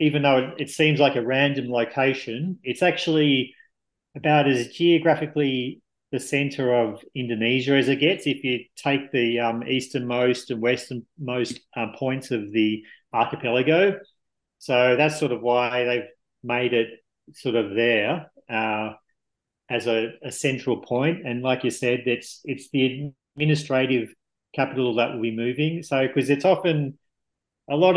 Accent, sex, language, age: Australian, male, English, 40-59